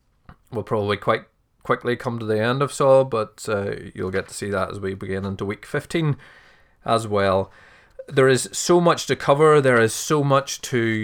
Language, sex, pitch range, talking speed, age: English, male, 100-130 Hz, 195 wpm, 20-39